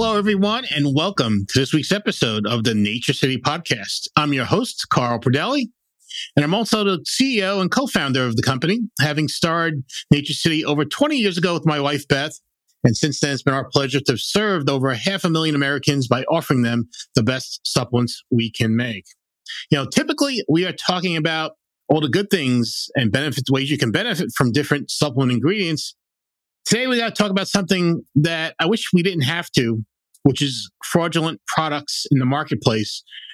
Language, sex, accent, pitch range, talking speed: English, male, American, 120-165 Hz, 195 wpm